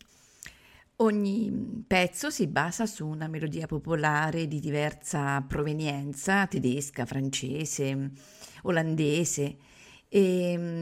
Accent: native